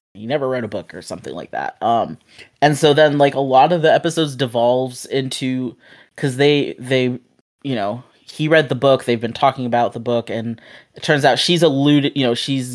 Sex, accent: male, American